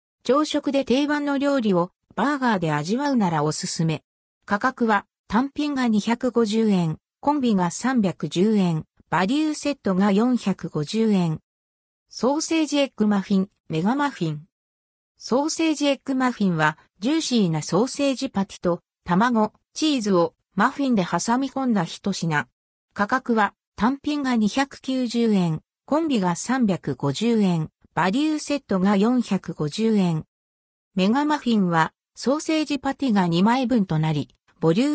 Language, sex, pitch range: Japanese, female, 175-265 Hz